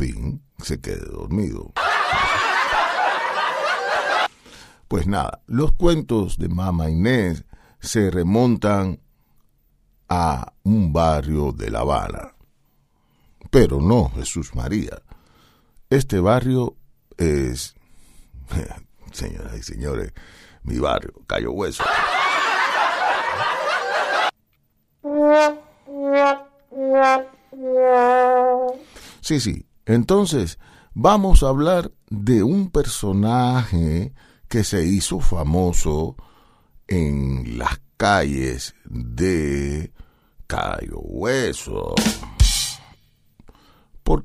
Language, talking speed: Spanish, 70 wpm